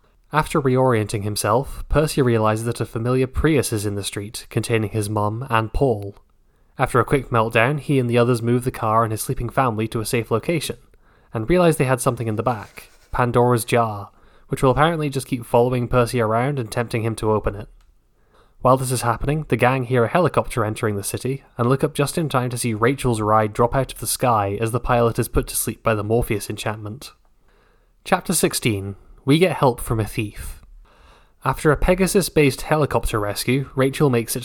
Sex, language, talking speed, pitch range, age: male, English, 200 wpm, 110-135 Hz, 10-29